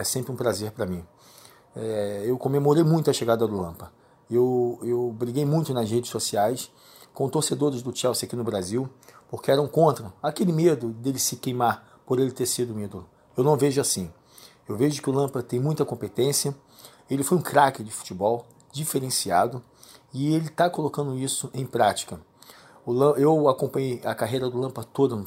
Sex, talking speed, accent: male, 180 wpm, Brazilian